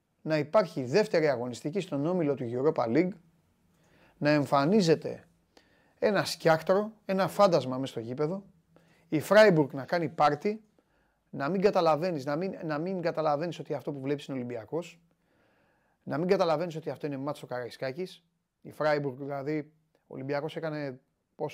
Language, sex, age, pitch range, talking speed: Greek, male, 30-49, 145-185 Hz, 140 wpm